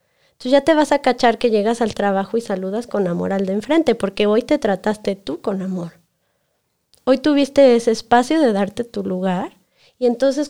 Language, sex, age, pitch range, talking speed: Spanish, female, 20-39, 200-245 Hz, 195 wpm